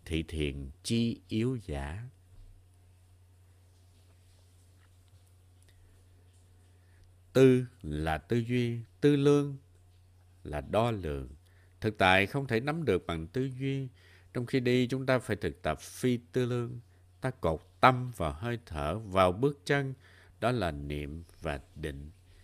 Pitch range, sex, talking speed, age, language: 90-120 Hz, male, 130 wpm, 60-79, Vietnamese